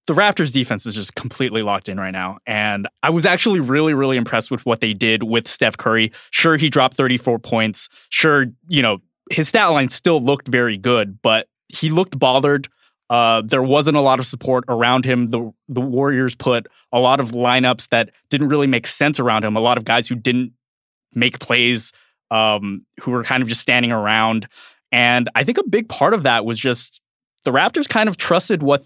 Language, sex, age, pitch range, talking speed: English, male, 20-39, 115-145 Hz, 205 wpm